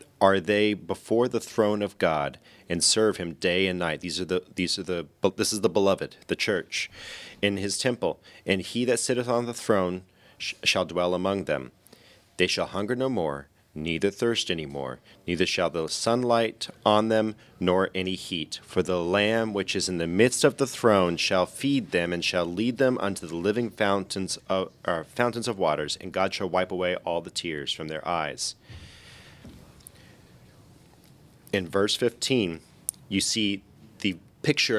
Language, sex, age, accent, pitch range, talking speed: English, male, 30-49, American, 90-110 Hz, 180 wpm